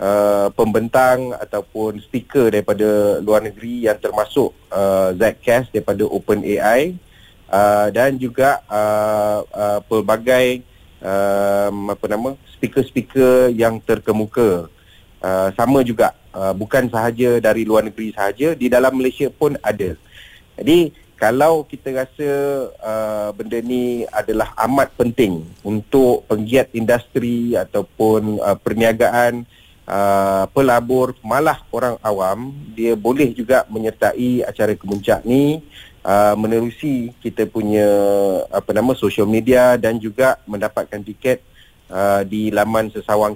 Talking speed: 115 wpm